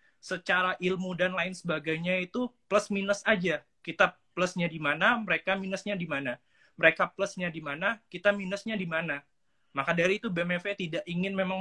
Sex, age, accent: male, 20-39, native